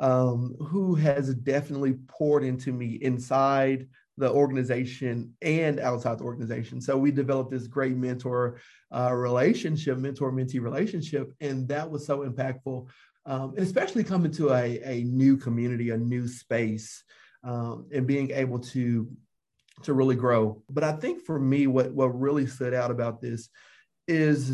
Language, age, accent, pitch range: English, 30-49, American, 125-145 Hz